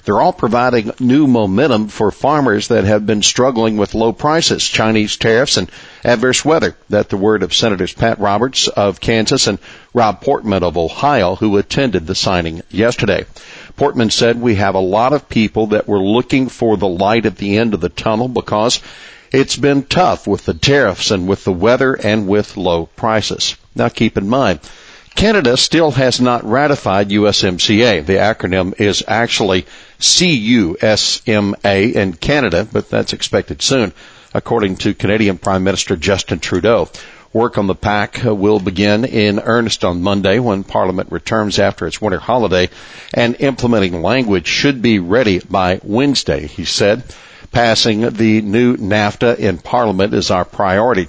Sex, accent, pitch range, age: male, American, 95-120 Hz, 60-79